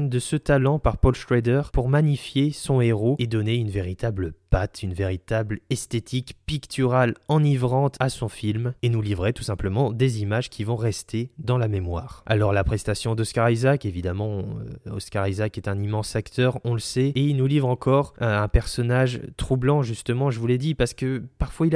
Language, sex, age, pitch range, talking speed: French, male, 20-39, 105-135 Hz, 190 wpm